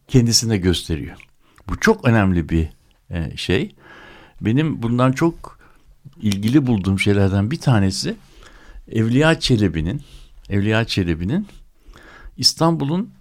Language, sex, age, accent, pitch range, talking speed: Turkish, male, 60-79, native, 100-145 Hz, 90 wpm